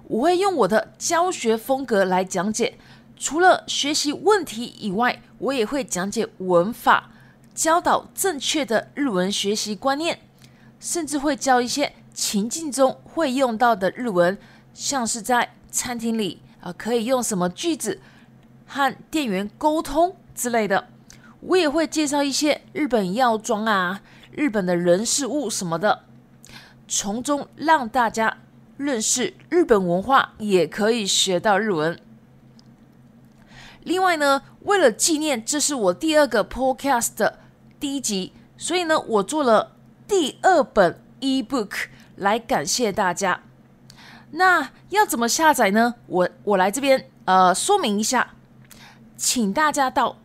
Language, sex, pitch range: Chinese, female, 205-295 Hz